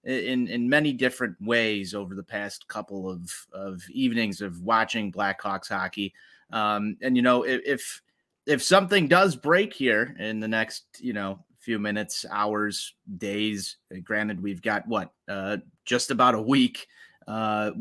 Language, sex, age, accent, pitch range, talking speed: English, male, 30-49, American, 105-130 Hz, 150 wpm